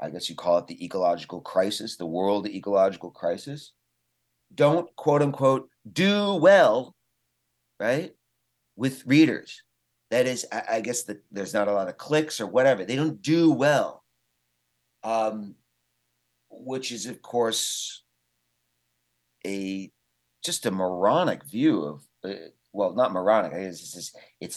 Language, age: English, 40-59